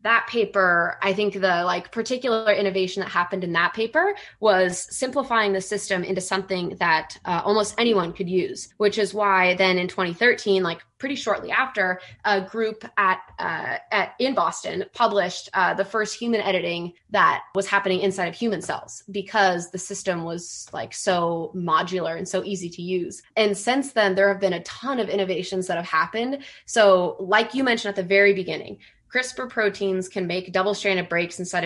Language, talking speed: English, 180 wpm